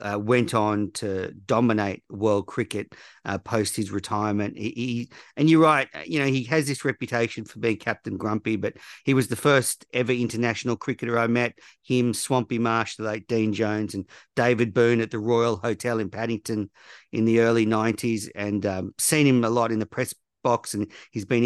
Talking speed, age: 185 wpm, 50-69